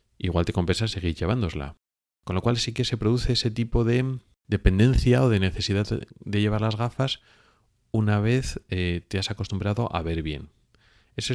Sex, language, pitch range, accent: male, Spanish, 95-120 Hz, Spanish